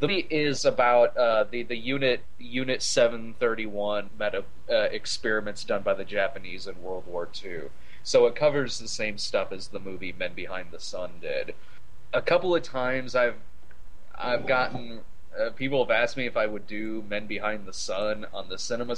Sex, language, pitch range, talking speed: male, English, 105-130 Hz, 185 wpm